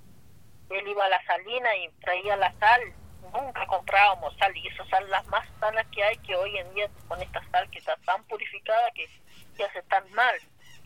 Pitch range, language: 185-220 Hz, Spanish